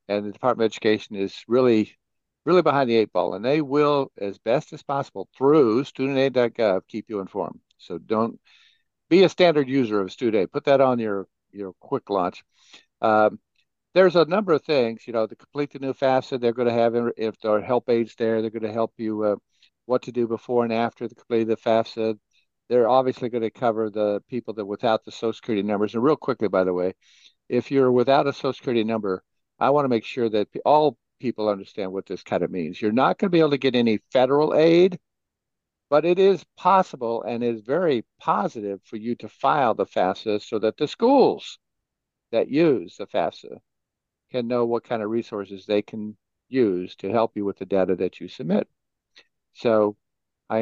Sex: male